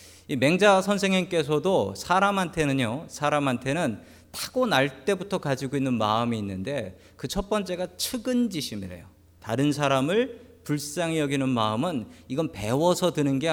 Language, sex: Korean, male